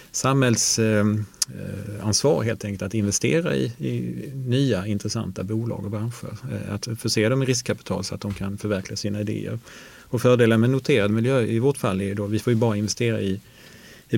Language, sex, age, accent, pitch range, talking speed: Swedish, male, 30-49, Norwegian, 105-120 Hz, 175 wpm